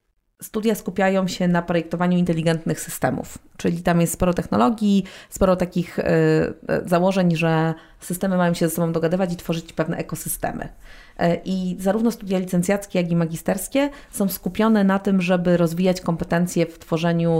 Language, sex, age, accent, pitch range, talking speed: Polish, female, 30-49, native, 165-195 Hz, 145 wpm